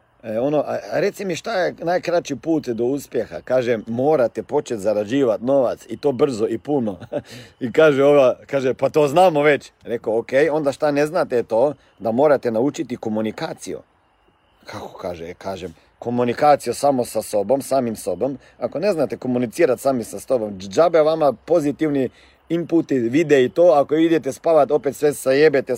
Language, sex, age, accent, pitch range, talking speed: Croatian, male, 40-59, native, 125-165 Hz, 160 wpm